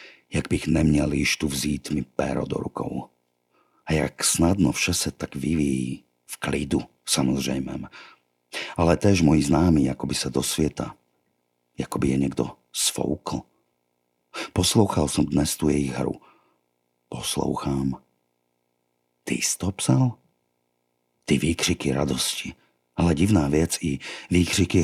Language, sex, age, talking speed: Slovak, male, 50-69, 125 wpm